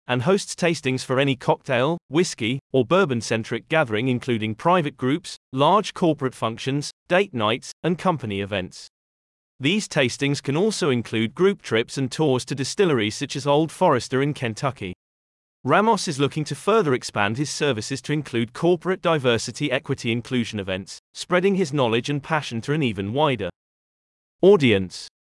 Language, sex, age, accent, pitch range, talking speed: English, male, 30-49, British, 115-165 Hz, 150 wpm